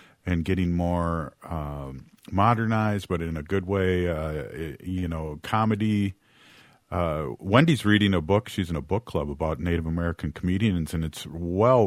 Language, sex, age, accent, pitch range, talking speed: English, male, 50-69, American, 85-110 Hz, 155 wpm